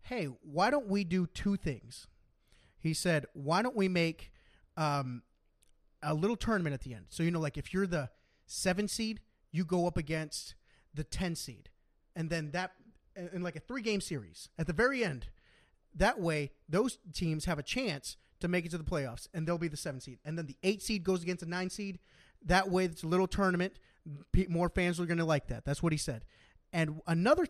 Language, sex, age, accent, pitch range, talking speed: English, male, 30-49, American, 140-185 Hz, 210 wpm